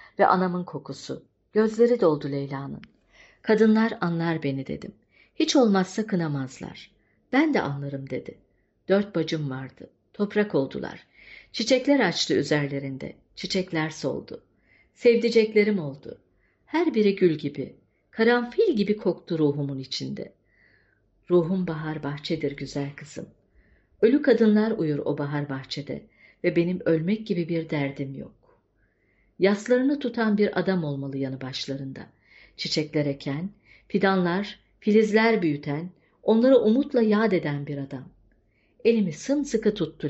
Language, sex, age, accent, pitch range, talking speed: Turkish, female, 60-79, native, 140-215 Hz, 115 wpm